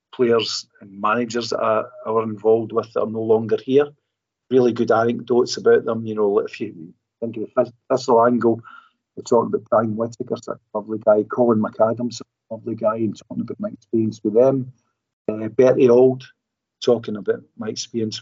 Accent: British